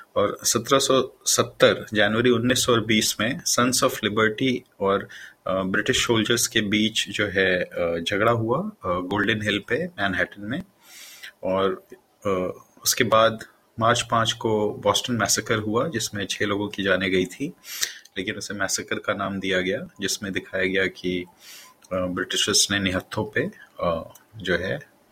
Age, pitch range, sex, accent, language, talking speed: 30-49, 105-125 Hz, male, native, Hindi, 140 wpm